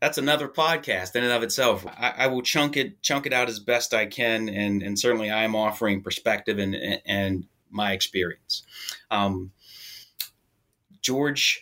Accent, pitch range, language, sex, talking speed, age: American, 100-125 Hz, English, male, 160 wpm, 30-49